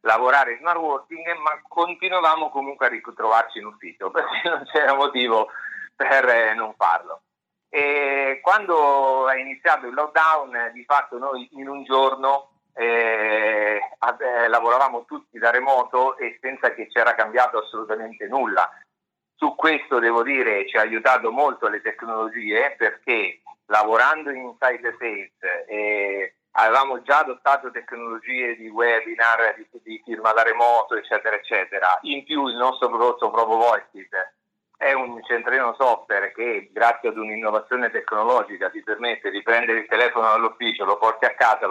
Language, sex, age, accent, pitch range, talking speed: Italian, male, 50-69, native, 115-145 Hz, 140 wpm